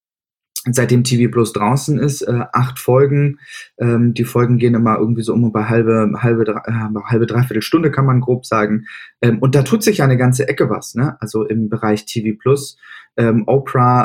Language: German